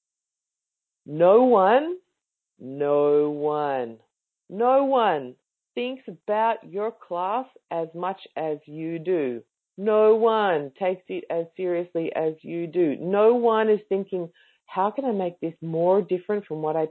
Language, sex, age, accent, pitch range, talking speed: English, female, 40-59, Australian, 165-250 Hz, 135 wpm